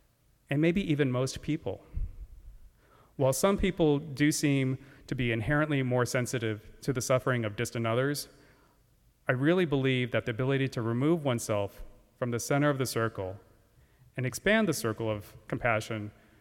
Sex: male